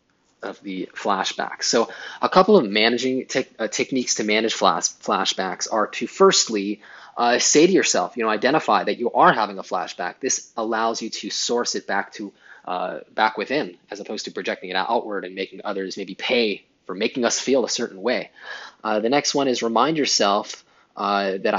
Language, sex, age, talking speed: English, male, 20-39, 190 wpm